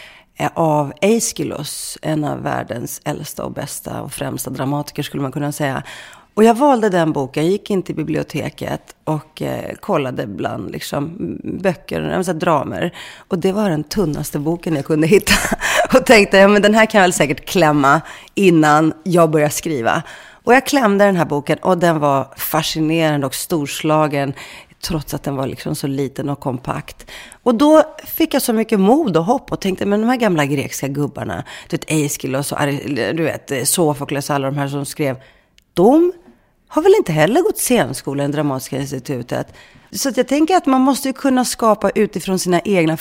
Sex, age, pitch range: female, 30-49, 145-205 Hz